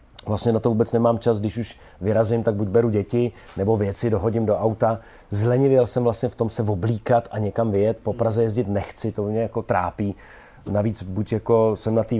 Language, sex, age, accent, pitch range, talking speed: Czech, male, 40-59, native, 105-120 Hz, 205 wpm